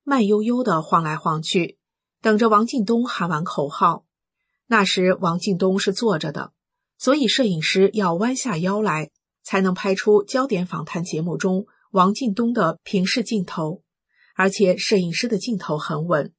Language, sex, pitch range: Chinese, female, 170-215 Hz